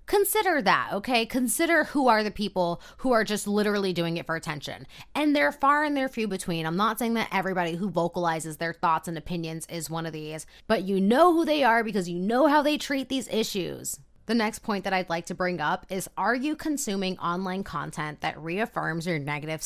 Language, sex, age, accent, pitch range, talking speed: English, female, 20-39, American, 165-230 Hz, 215 wpm